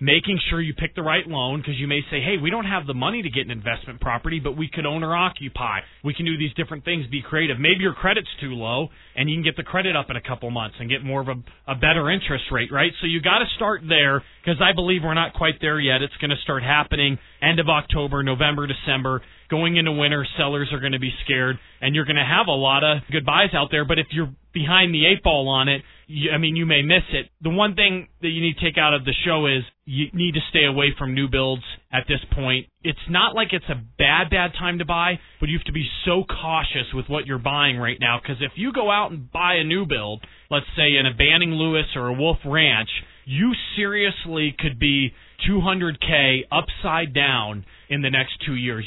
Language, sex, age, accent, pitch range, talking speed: English, male, 30-49, American, 135-165 Hz, 245 wpm